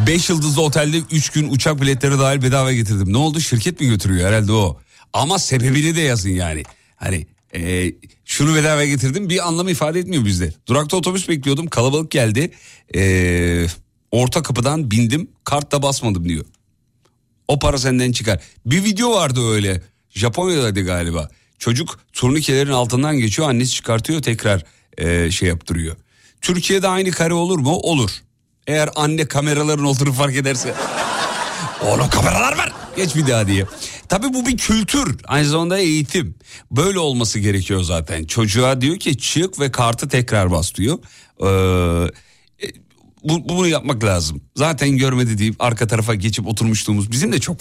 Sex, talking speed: male, 150 wpm